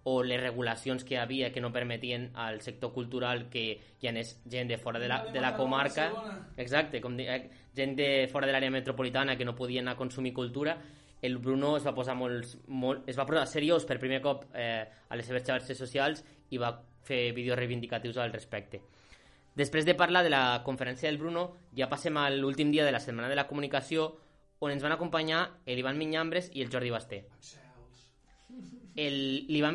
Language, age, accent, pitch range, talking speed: Spanish, 20-39, Spanish, 125-155 Hz, 180 wpm